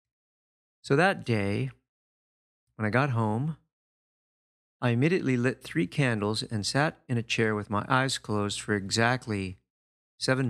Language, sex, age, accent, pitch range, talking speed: English, male, 40-59, American, 105-130 Hz, 135 wpm